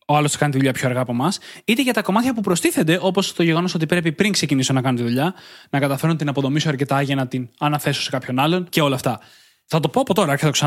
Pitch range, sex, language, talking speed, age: 140-185 Hz, male, Greek, 265 wpm, 20-39